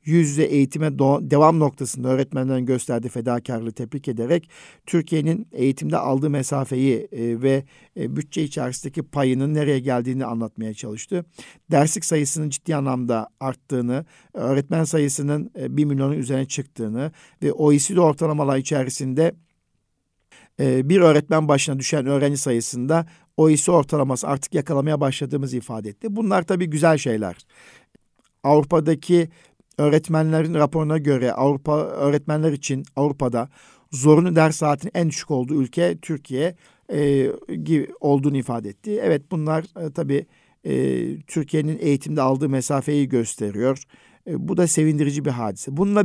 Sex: male